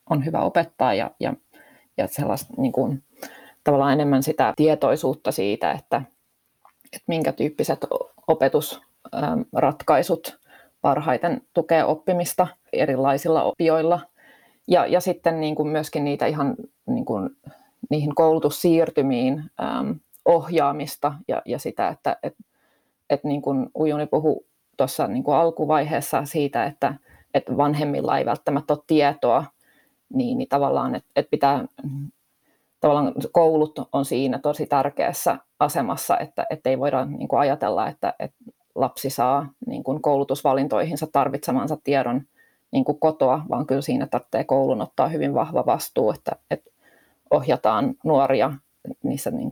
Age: 30-49